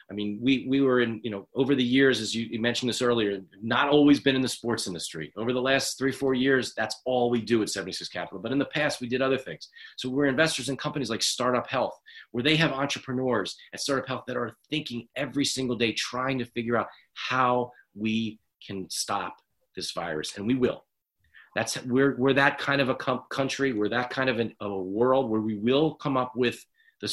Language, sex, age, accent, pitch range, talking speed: English, male, 40-59, American, 110-140 Hz, 225 wpm